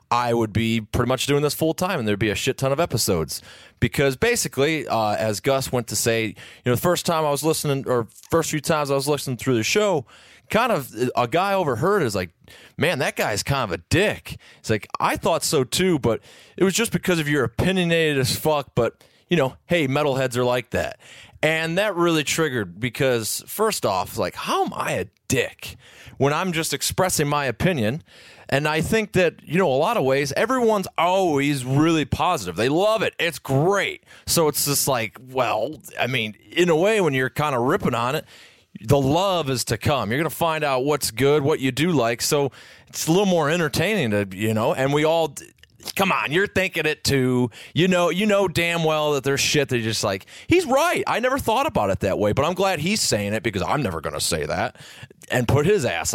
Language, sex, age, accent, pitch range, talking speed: English, male, 30-49, American, 120-165 Hz, 220 wpm